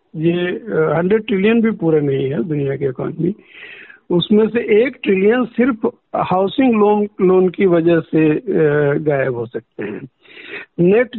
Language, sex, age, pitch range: Hindi, male, 50-69, 170-215 Hz